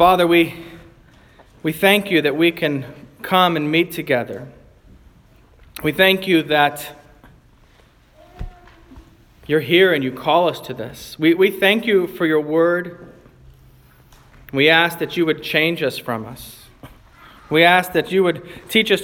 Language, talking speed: English, 150 wpm